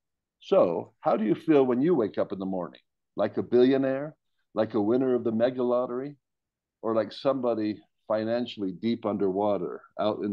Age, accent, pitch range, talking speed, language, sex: 50-69, American, 105-125 Hz, 175 wpm, English, male